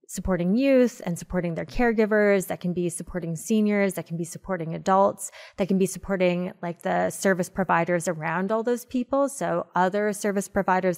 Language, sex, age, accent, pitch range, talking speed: English, female, 20-39, American, 170-200 Hz, 175 wpm